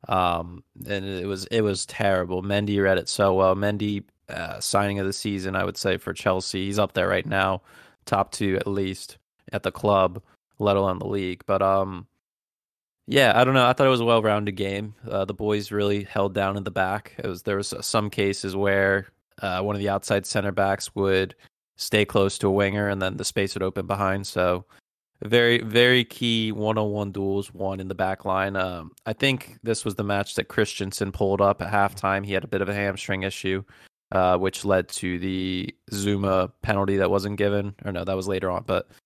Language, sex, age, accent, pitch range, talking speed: English, male, 20-39, American, 95-105 Hz, 210 wpm